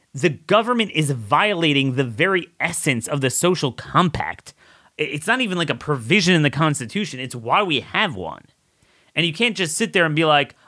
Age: 30-49